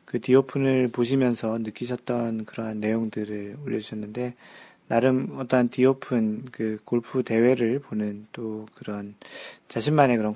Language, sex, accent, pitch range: Korean, male, native, 115-140 Hz